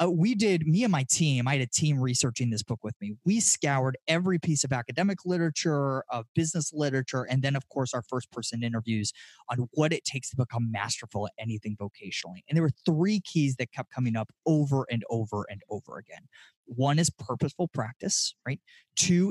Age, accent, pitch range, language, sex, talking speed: 20-39, American, 125-175 Hz, English, male, 200 wpm